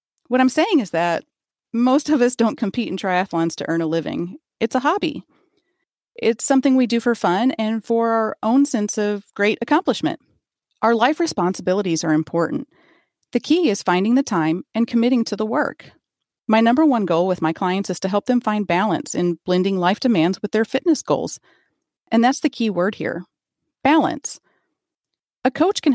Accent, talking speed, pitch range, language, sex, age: American, 185 wpm, 180-265 Hz, English, female, 40-59